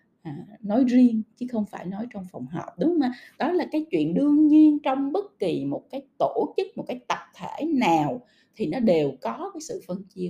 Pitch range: 185-275 Hz